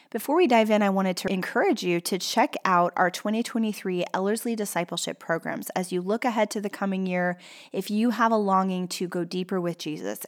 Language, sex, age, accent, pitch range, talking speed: English, female, 20-39, American, 175-210 Hz, 205 wpm